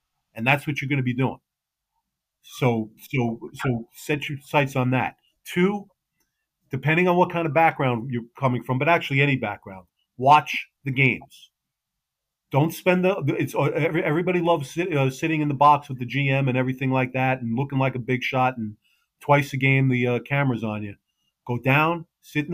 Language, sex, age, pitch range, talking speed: English, male, 40-59, 125-155 Hz, 190 wpm